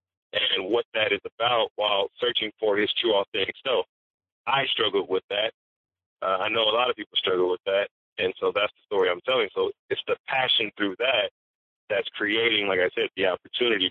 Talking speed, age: 200 wpm, 40-59